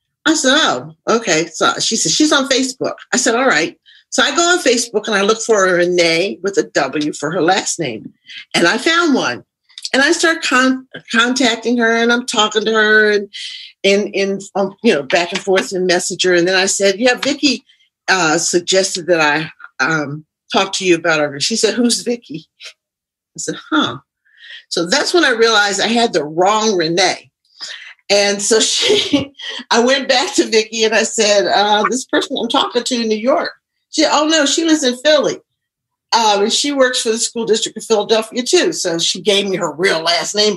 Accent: American